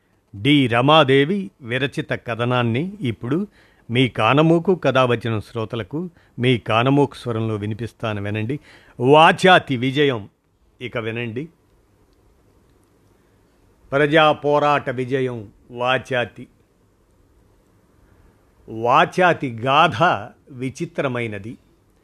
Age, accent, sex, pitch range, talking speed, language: 50-69, native, male, 115-145 Hz, 70 wpm, Telugu